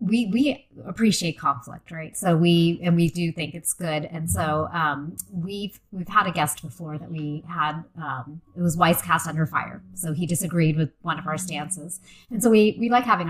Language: English